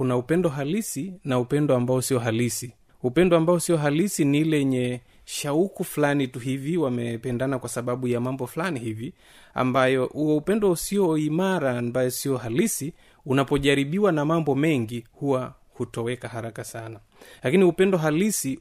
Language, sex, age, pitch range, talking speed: Swahili, male, 30-49, 125-165 Hz, 145 wpm